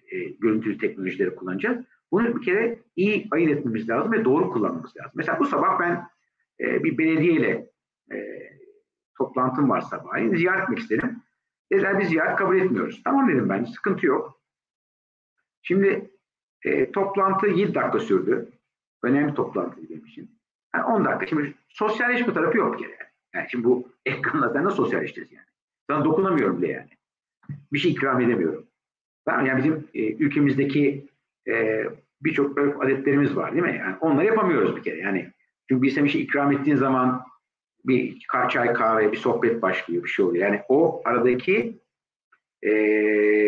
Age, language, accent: 50-69, Turkish, native